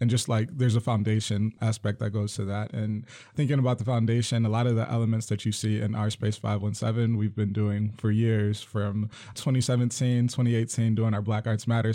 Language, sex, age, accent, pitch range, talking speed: English, male, 20-39, American, 110-125 Hz, 200 wpm